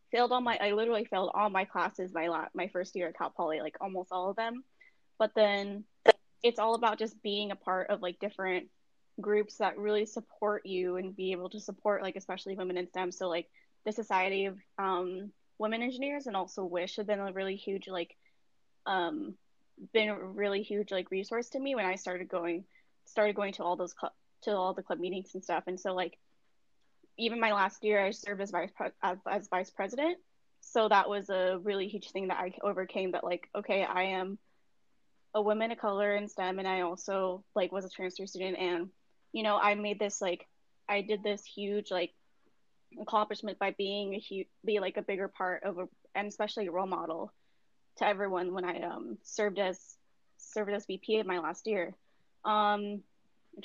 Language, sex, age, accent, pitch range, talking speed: English, female, 10-29, American, 185-210 Hz, 205 wpm